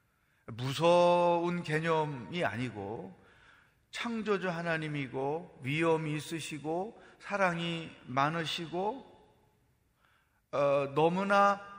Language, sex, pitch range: Korean, male, 135-190 Hz